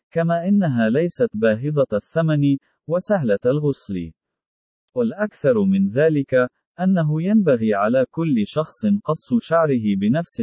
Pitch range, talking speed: 125-205 Hz, 105 wpm